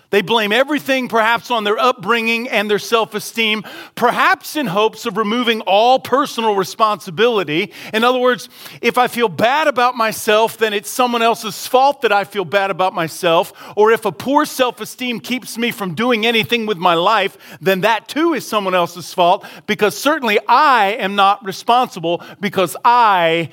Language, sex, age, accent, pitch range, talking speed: English, male, 40-59, American, 190-245 Hz, 170 wpm